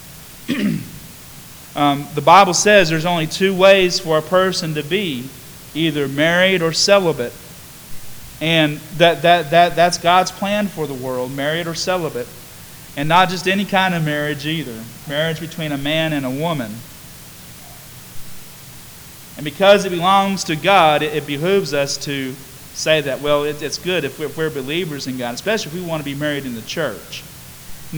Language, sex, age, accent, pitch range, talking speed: English, male, 40-59, American, 145-180 Hz, 170 wpm